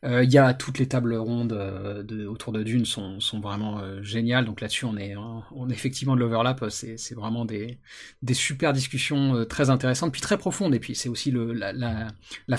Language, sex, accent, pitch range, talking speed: French, male, French, 120-155 Hz, 230 wpm